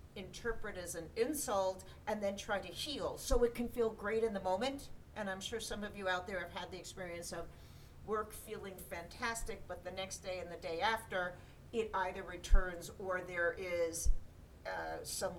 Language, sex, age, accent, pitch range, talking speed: English, female, 50-69, American, 175-225 Hz, 190 wpm